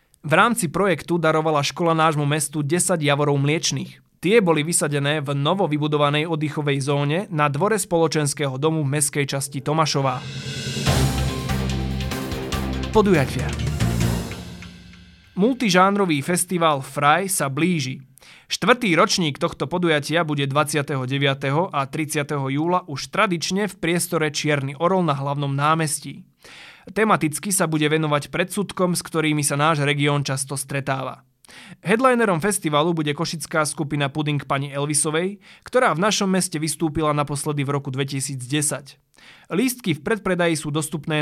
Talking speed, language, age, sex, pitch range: 120 wpm, Slovak, 20-39, male, 140-175 Hz